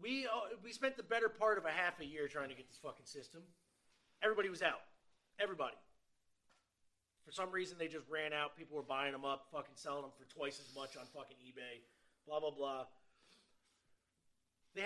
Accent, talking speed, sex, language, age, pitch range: American, 195 wpm, male, English, 30-49, 150-235 Hz